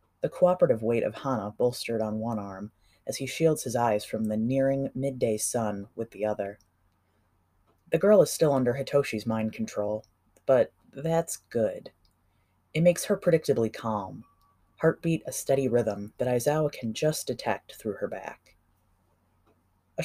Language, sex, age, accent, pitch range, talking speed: English, female, 30-49, American, 100-135 Hz, 155 wpm